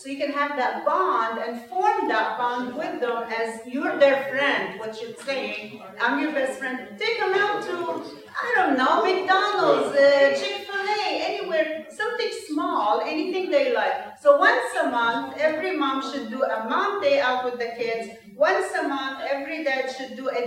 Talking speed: 180 wpm